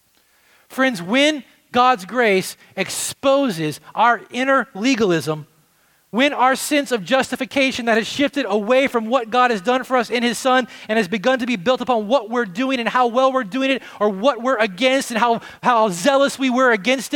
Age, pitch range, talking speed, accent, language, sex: 30-49, 185-265 Hz, 190 wpm, American, English, male